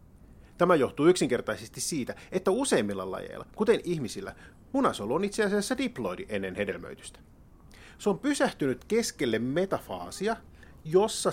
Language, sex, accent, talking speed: Finnish, male, native, 115 wpm